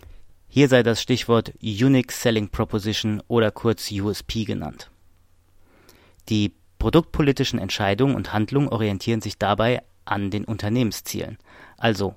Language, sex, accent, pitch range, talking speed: German, male, German, 100-125 Hz, 115 wpm